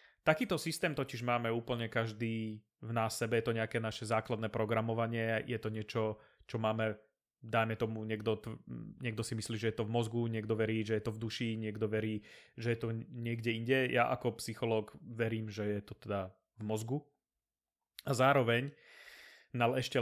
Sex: male